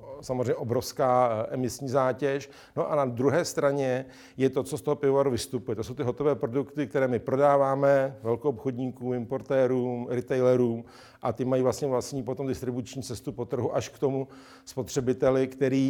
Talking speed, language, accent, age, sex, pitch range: 160 wpm, Czech, native, 50-69, male, 120-135 Hz